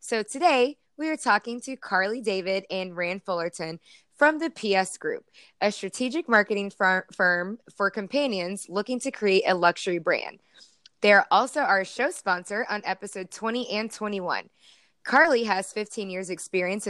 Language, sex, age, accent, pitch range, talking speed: English, female, 20-39, American, 185-245 Hz, 155 wpm